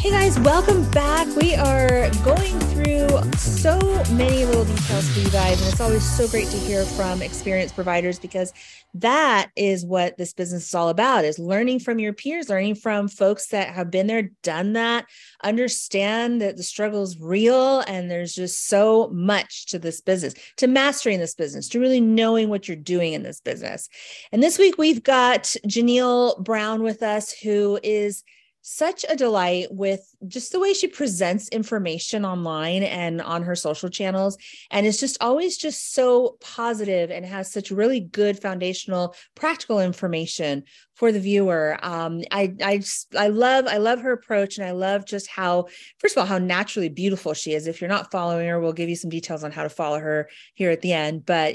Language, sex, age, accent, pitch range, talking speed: English, female, 30-49, American, 175-225 Hz, 190 wpm